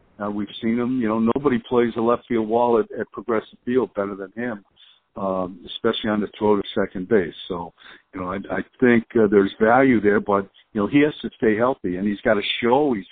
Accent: American